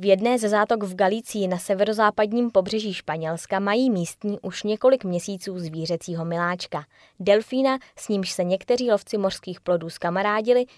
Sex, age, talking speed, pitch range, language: female, 20-39, 145 wpm, 175-220 Hz, Czech